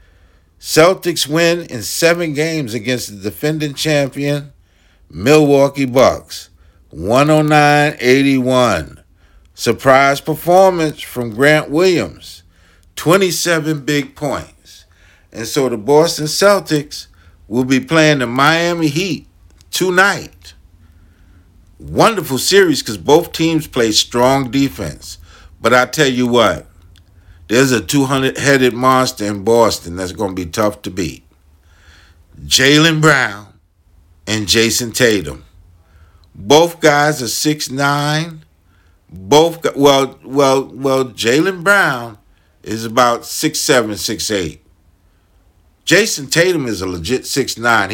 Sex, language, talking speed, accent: male, English, 110 wpm, American